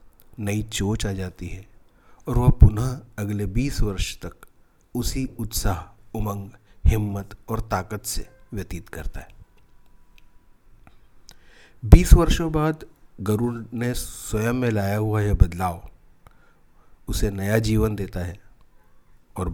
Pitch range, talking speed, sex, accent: 95-115 Hz, 120 wpm, male, native